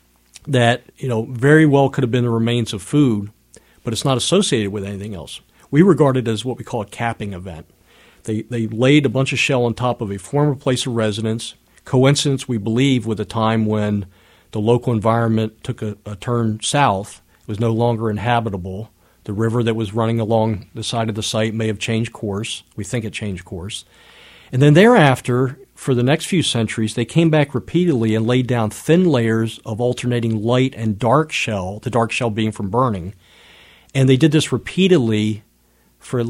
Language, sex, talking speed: English, male, 200 wpm